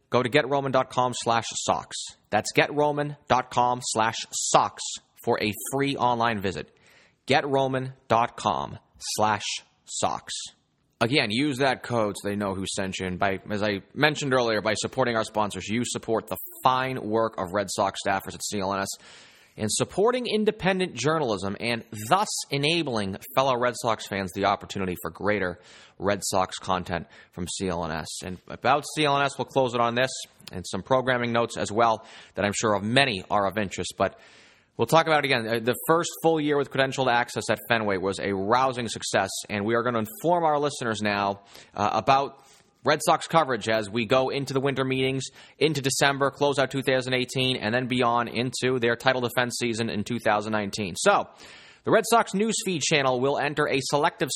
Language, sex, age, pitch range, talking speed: English, male, 30-49, 105-140 Hz, 170 wpm